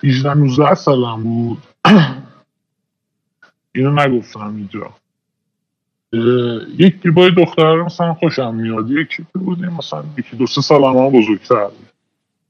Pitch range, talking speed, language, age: 120-175 Hz, 85 wpm, Persian, 20-39